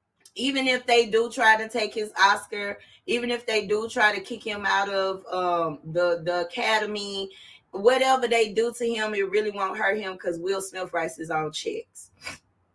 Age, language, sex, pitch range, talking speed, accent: 20-39, English, female, 185-230 Hz, 190 wpm, American